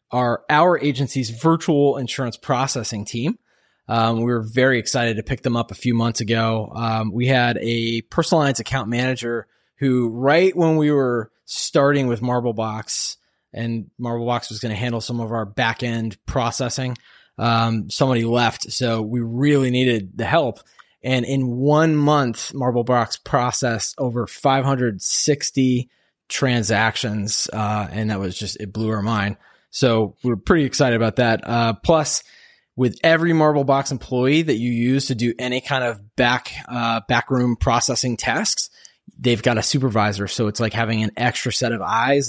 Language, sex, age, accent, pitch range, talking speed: English, male, 20-39, American, 115-135 Hz, 155 wpm